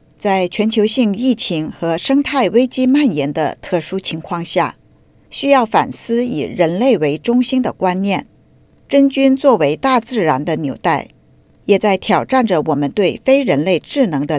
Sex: female